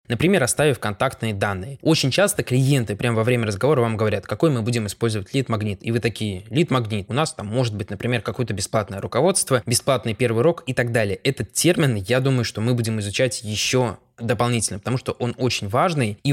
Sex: male